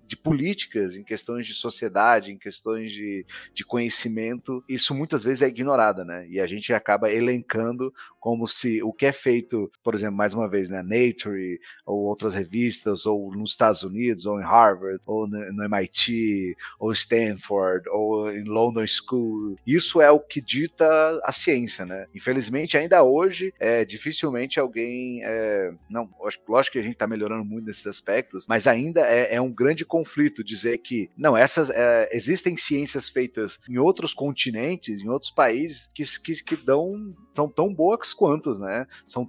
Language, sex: Portuguese, male